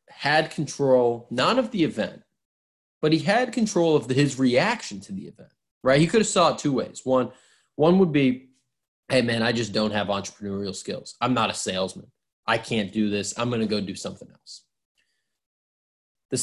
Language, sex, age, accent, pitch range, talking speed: English, male, 20-39, American, 105-140 Hz, 195 wpm